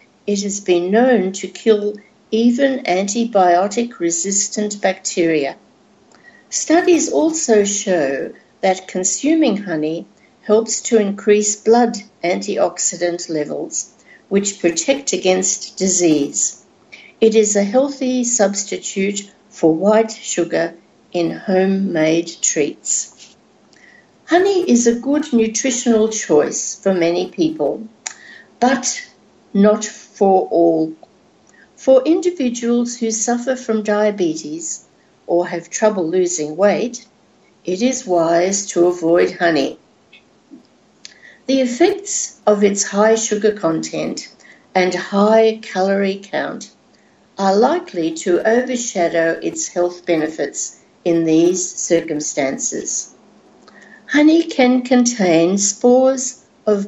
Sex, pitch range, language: female, 180-235 Hz, English